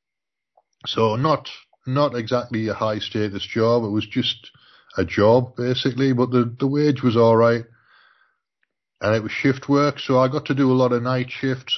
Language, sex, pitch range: English, male, 110-130 Hz